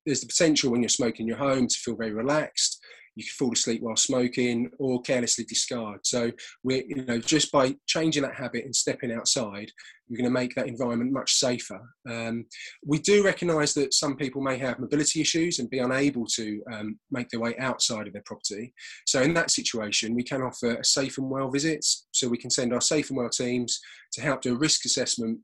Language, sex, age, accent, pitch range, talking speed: English, male, 20-39, British, 115-135 Hz, 215 wpm